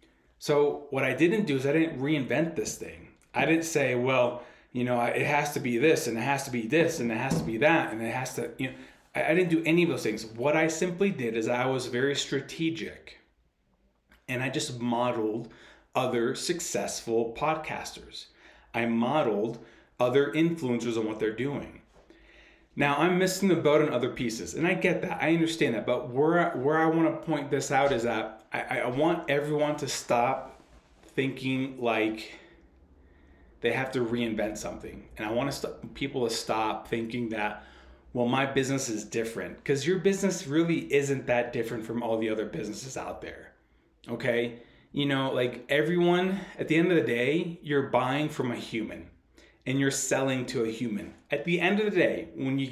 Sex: male